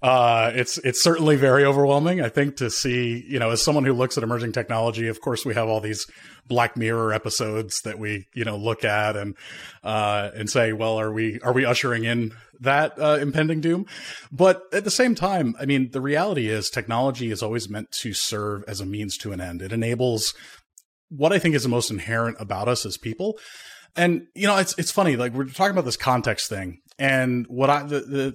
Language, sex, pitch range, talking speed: English, male, 110-140 Hz, 215 wpm